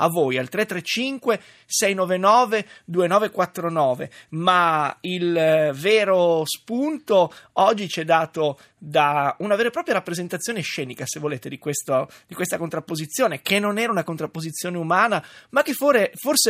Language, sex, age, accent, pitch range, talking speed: Italian, male, 30-49, native, 160-220 Hz, 125 wpm